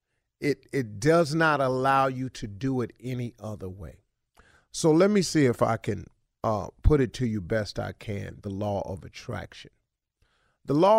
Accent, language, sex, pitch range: American, English, male, 120-180 Hz